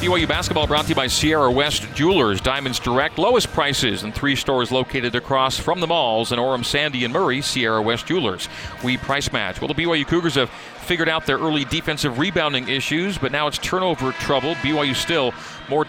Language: English